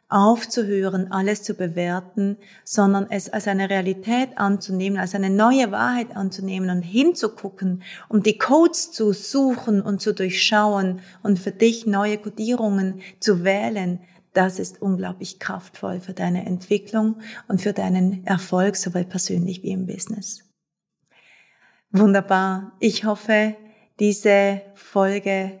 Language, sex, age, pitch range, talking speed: German, female, 30-49, 190-210 Hz, 125 wpm